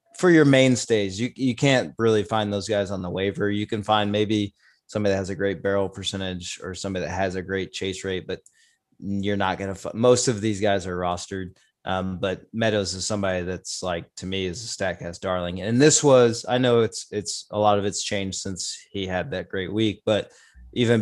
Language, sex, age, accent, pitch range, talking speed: English, male, 20-39, American, 95-115 Hz, 220 wpm